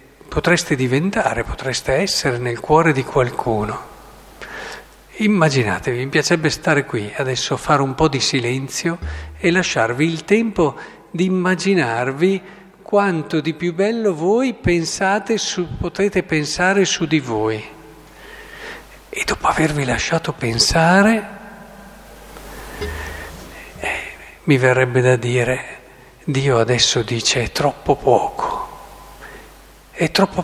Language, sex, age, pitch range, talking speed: Italian, male, 50-69, 130-190 Hz, 110 wpm